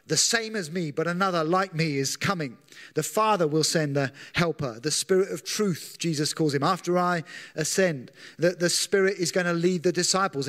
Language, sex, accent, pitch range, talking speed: English, male, British, 155-185 Hz, 200 wpm